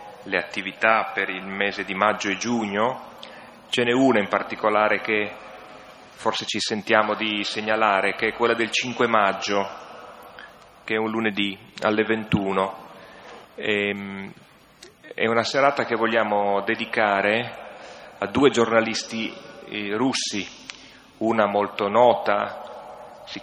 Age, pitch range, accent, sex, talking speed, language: 30-49, 100-110 Hz, native, male, 120 wpm, Italian